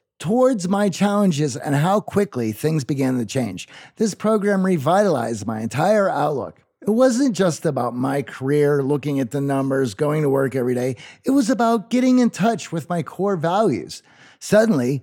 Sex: male